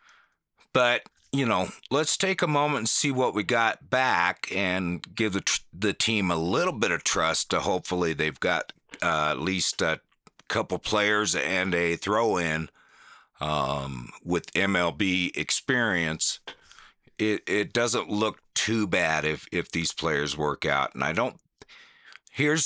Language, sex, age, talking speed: English, male, 50-69, 150 wpm